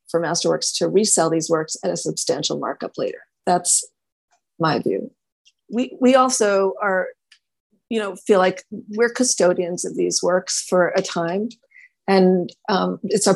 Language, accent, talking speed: English, American, 155 wpm